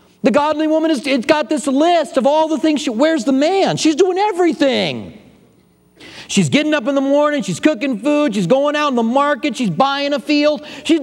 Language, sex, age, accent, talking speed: English, male, 40-59, American, 210 wpm